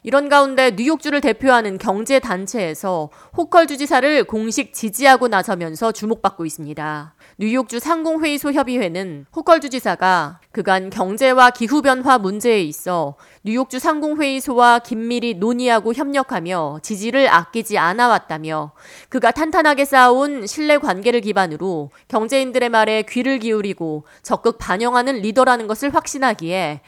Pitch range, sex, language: 190-270 Hz, female, Korean